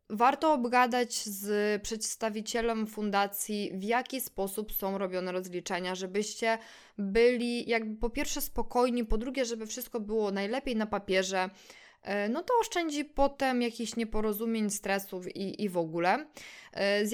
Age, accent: 20-39, native